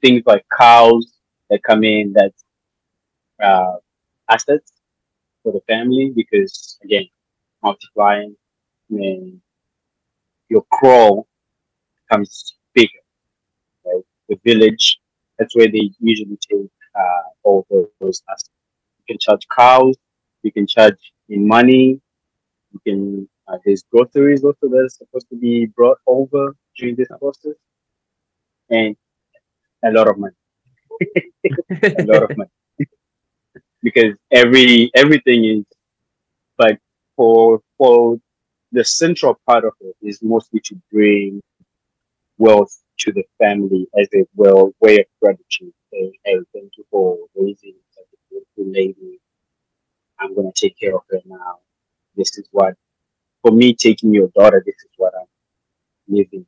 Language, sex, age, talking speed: English, male, 30-49, 125 wpm